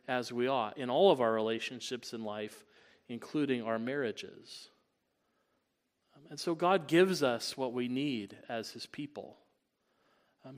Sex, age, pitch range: male, 40-59, 115-140 Hz